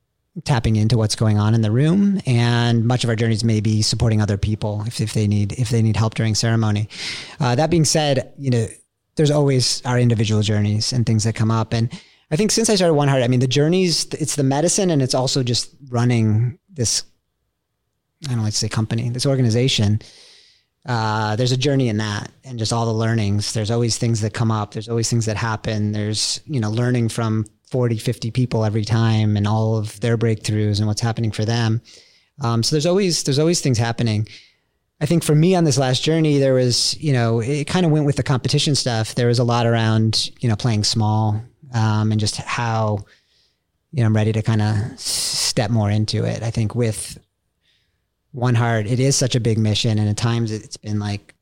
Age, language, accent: 30-49, English, American